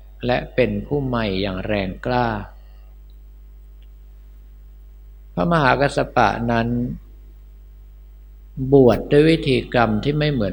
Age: 60-79